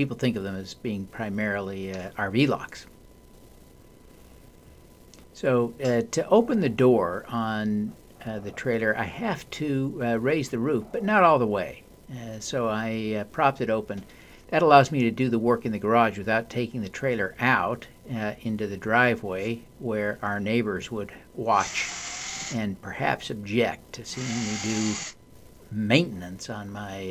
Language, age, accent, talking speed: English, 50-69, American, 160 wpm